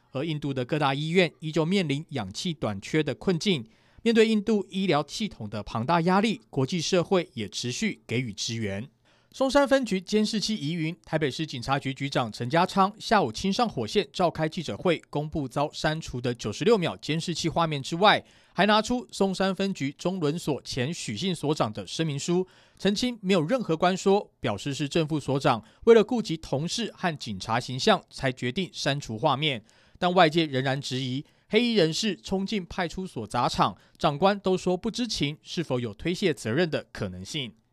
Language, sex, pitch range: Chinese, male, 135-195 Hz